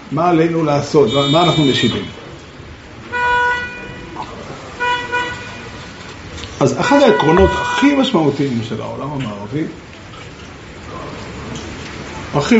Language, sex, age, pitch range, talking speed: Hebrew, male, 50-69, 125-180 Hz, 70 wpm